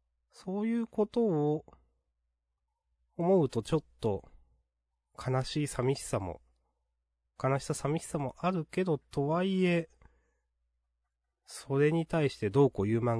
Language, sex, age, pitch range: Japanese, male, 30-49, 80-125 Hz